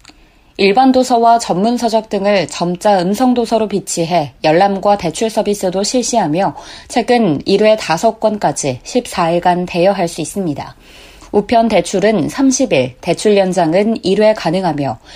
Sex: female